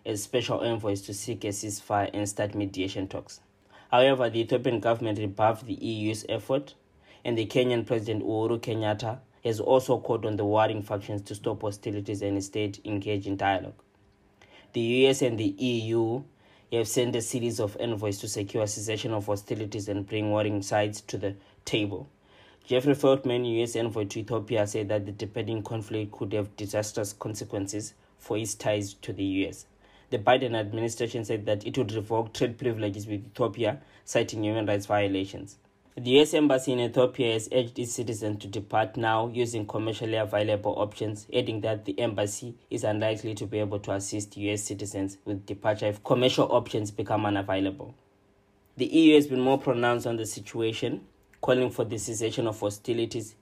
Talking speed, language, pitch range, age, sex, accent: 170 wpm, English, 105-120 Hz, 20-39, male, South African